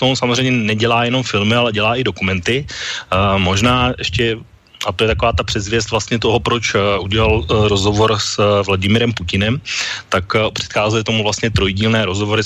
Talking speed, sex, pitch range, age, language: 145 wpm, male, 100-115 Hz, 30-49, Slovak